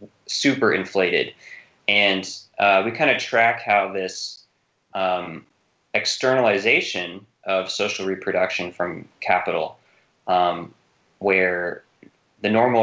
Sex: male